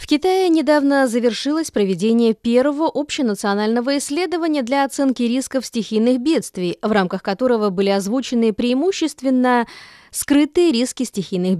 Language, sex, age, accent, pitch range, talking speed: Russian, female, 20-39, native, 200-270 Hz, 115 wpm